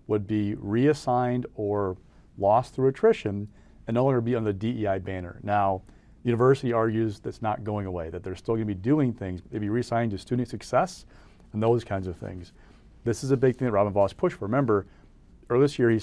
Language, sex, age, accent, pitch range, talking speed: English, male, 40-59, American, 100-125 Hz, 210 wpm